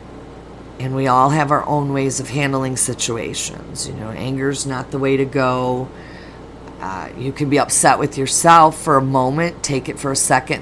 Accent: American